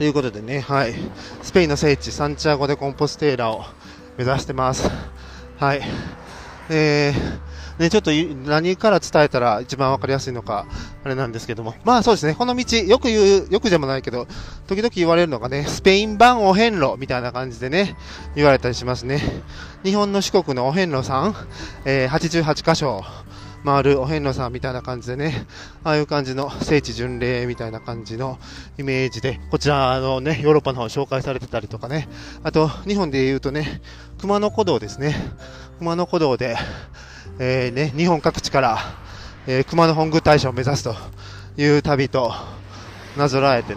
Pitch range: 115-150 Hz